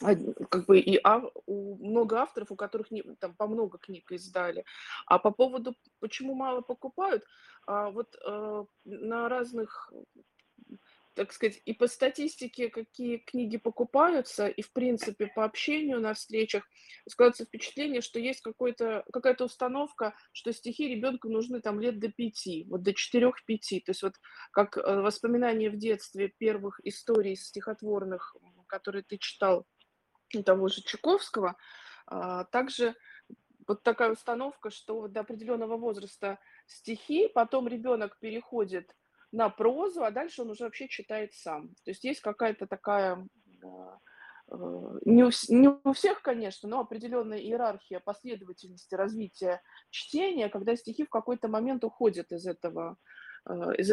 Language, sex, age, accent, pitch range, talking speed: Russian, female, 20-39, native, 205-245 Hz, 135 wpm